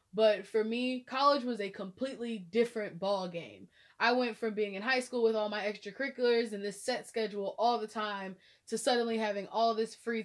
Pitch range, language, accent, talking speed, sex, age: 195-245 Hz, English, American, 200 wpm, female, 20-39